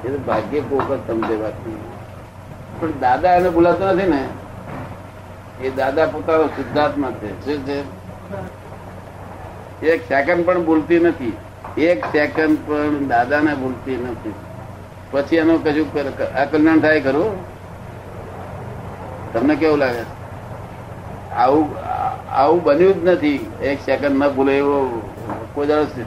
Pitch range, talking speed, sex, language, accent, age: 105-160 Hz, 75 wpm, male, Gujarati, native, 60-79